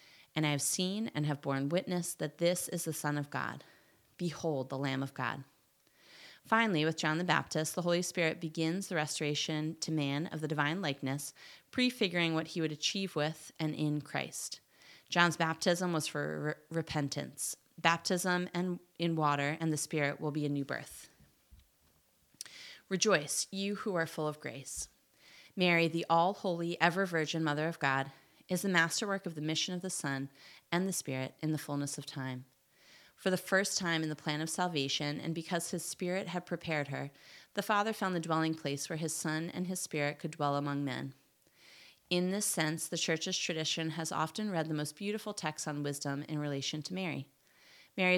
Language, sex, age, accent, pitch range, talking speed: English, female, 30-49, American, 150-175 Hz, 185 wpm